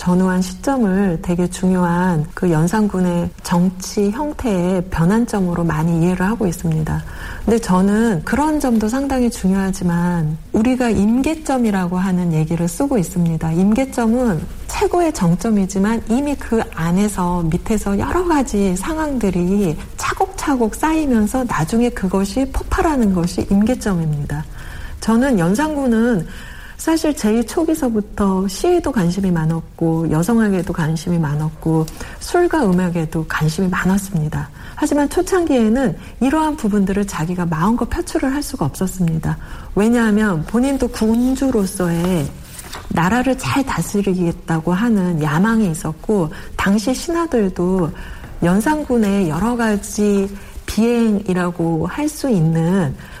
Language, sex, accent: Korean, female, native